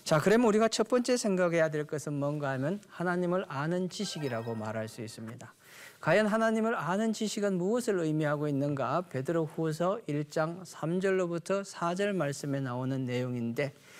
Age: 40-59